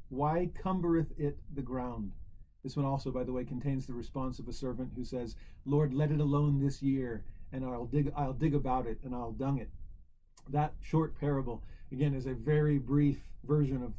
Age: 40-59